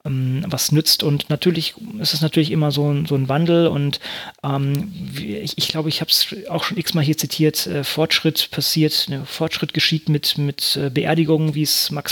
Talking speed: 200 wpm